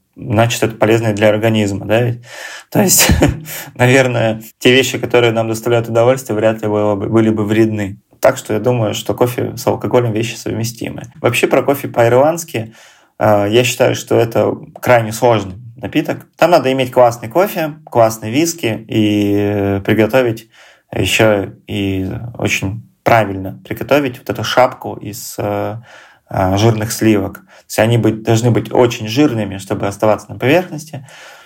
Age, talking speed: 20-39, 145 wpm